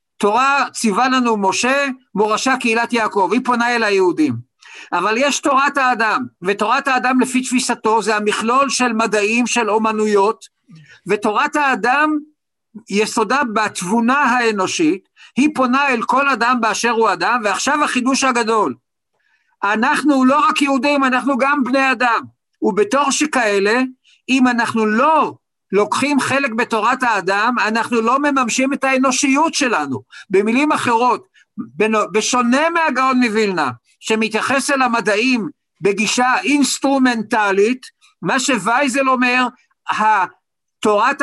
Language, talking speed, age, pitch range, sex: Hebrew, 115 wpm, 50-69, 215-265 Hz, male